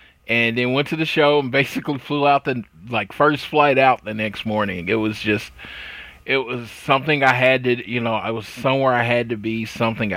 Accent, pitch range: American, 105-130 Hz